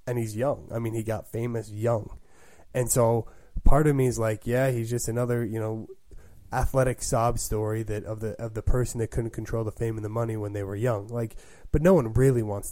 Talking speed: 230 wpm